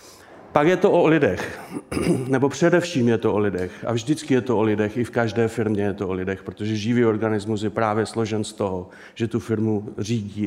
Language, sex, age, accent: Czech, male, 40-59, native